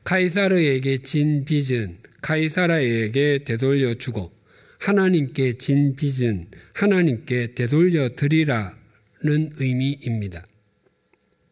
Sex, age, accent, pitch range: male, 50-69, native, 115-160 Hz